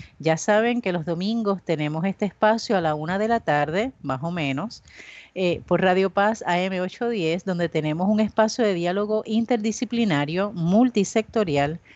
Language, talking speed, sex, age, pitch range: Spanish, 155 wpm, female, 30-49, 165-220 Hz